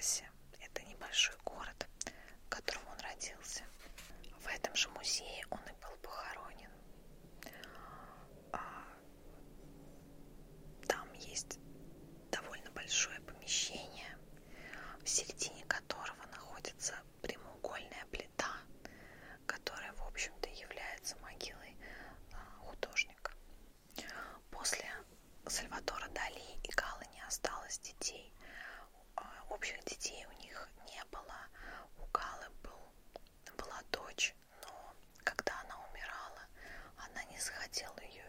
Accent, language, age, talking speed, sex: native, Russian, 20-39, 90 wpm, female